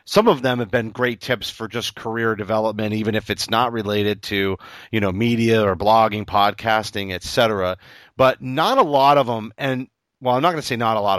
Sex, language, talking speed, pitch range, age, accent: male, English, 220 wpm, 100-125 Hz, 30-49, American